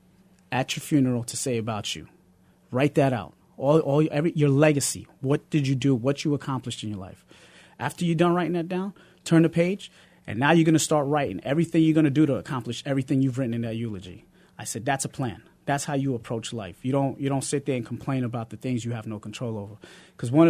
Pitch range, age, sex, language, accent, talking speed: 125-160 Hz, 30-49, male, English, American, 240 wpm